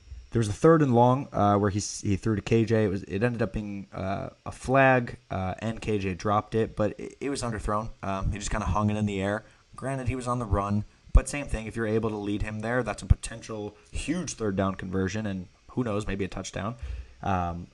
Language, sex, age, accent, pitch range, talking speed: English, male, 20-39, American, 95-115 Hz, 245 wpm